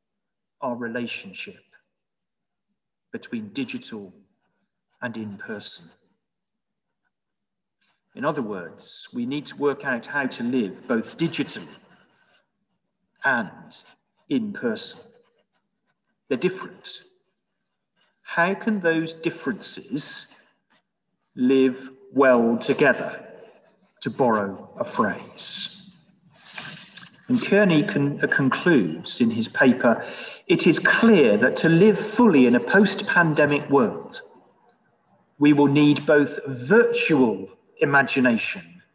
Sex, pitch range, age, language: male, 145-225 Hz, 40-59, English